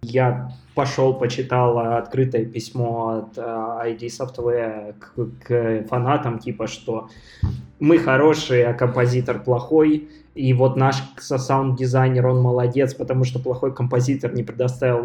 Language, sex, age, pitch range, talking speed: Russian, male, 20-39, 125-155 Hz, 120 wpm